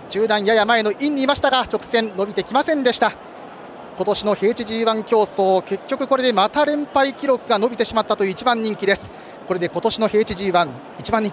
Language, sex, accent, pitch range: Japanese, male, native, 210-270 Hz